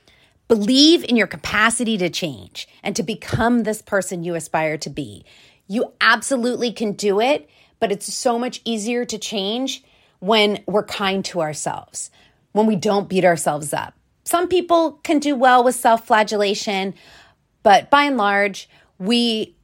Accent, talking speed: American, 155 wpm